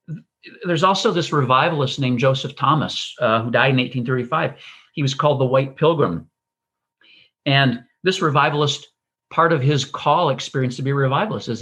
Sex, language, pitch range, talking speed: male, English, 120-155 Hz, 155 wpm